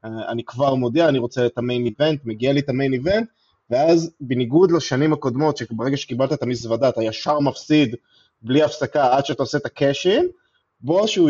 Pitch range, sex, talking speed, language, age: 125-155 Hz, male, 180 wpm, Hebrew, 20-39